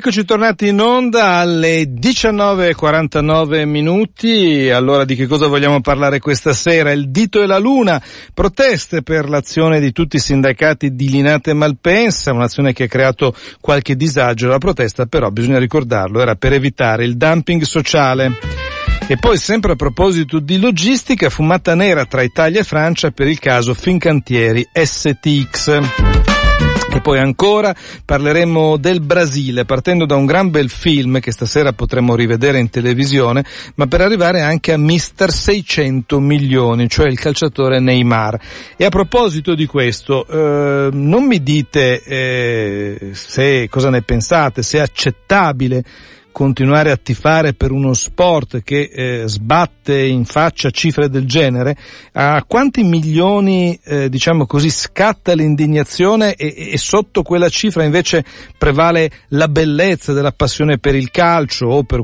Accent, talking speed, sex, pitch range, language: native, 145 wpm, male, 130-170 Hz, Italian